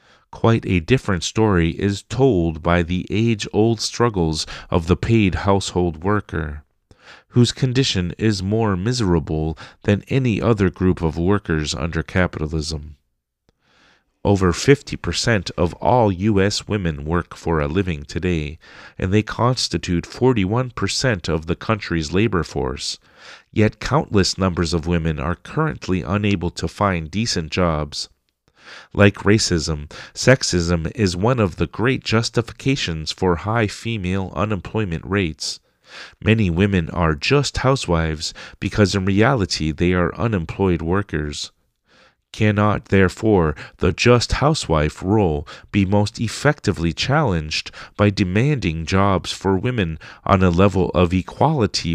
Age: 40-59